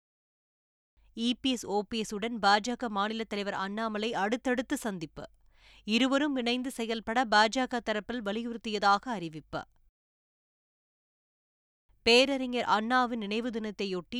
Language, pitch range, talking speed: Tamil, 205-245 Hz, 80 wpm